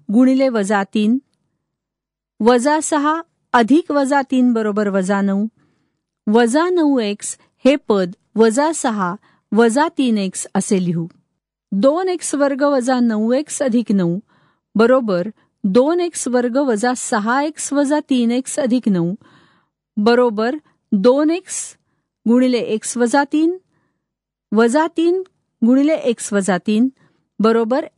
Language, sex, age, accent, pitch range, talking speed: Marathi, female, 50-69, native, 210-275 Hz, 80 wpm